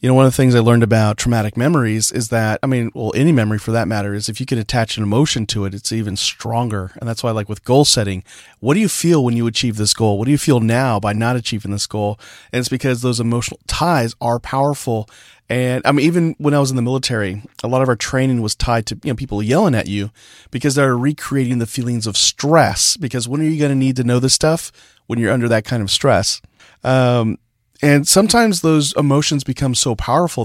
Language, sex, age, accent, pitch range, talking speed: English, male, 30-49, American, 110-130 Hz, 245 wpm